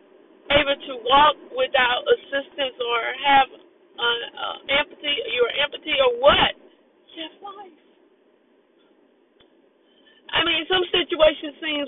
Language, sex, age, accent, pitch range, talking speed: English, female, 50-69, American, 290-415 Hz, 100 wpm